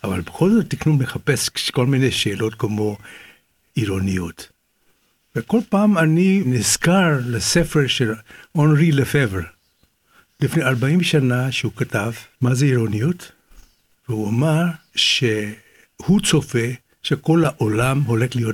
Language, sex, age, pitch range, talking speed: Hebrew, male, 60-79, 120-165 Hz, 105 wpm